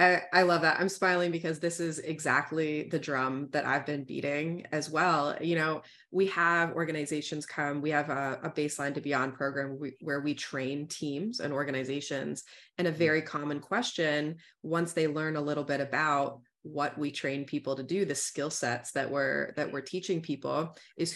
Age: 20-39